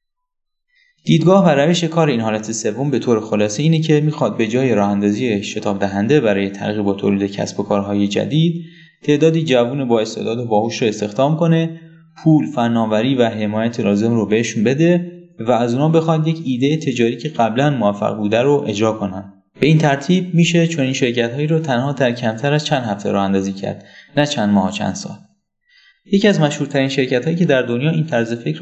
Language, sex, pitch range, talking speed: Persian, male, 110-150 Hz, 180 wpm